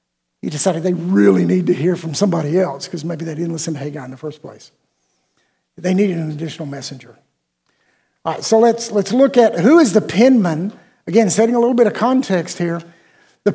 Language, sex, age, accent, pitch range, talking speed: English, male, 50-69, American, 175-225 Hz, 205 wpm